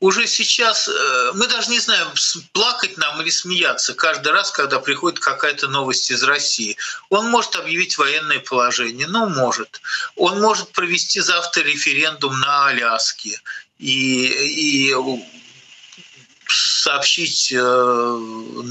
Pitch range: 125-210 Hz